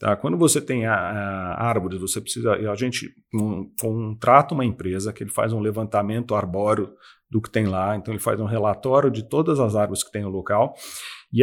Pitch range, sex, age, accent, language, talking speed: 105-130 Hz, male, 40-59, Brazilian, Portuguese, 200 wpm